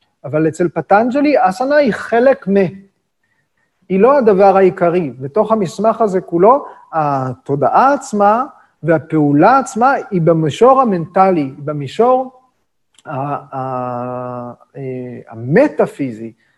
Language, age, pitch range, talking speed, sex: Hebrew, 40-59, 150-210 Hz, 90 wpm, male